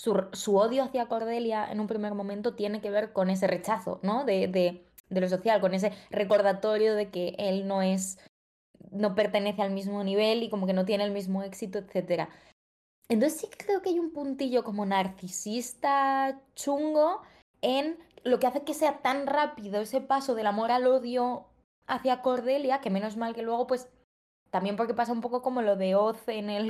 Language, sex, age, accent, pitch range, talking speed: Spanish, female, 20-39, Spanish, 190-240 Hz, 195 wpm